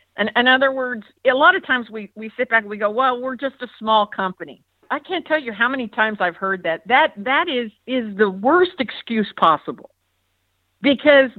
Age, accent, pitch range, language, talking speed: 50-69, American, 180-255 Hz, English, 210 wpm